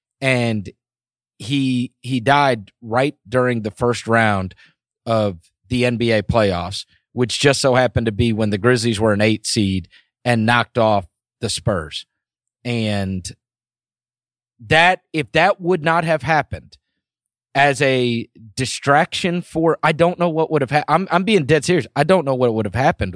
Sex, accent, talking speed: male, American, 160 wpm